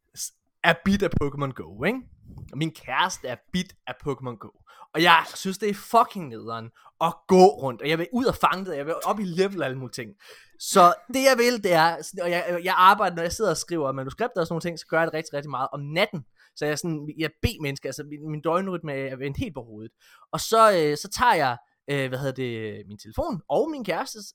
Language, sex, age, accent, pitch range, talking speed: Danish, male, 20-39, native, 145-205 Hz, 240 wpm